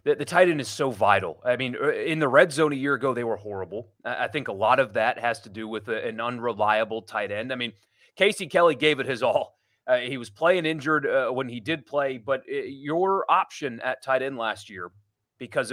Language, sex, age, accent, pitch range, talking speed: English, male, 30-49, American, 120-180 Hz, 235 wpm